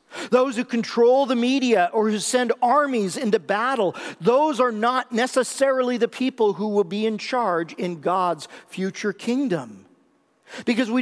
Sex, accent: male, American